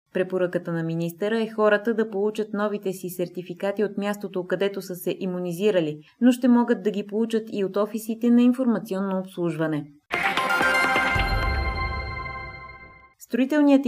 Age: 20-39